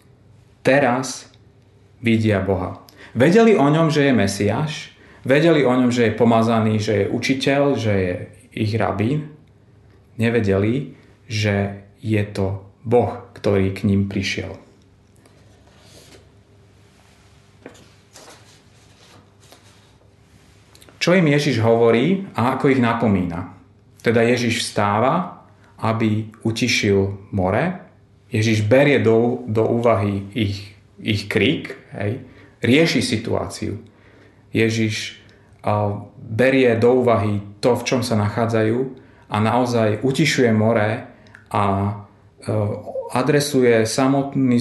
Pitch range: 100-125 Hz